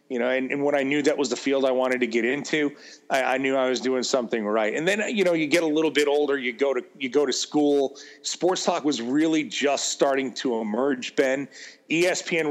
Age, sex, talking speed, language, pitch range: 30-49, male, 245 wpm, English, 130-150 Hz